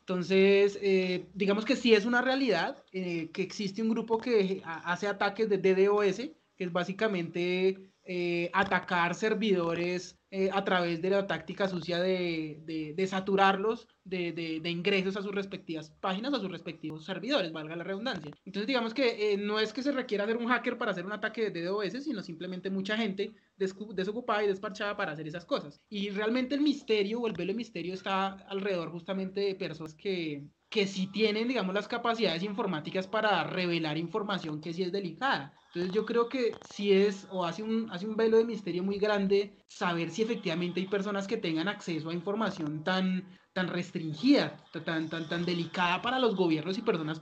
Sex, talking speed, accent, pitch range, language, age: male, 185 wpm, Colombian, 175-220 Hz, Spanish, 20-39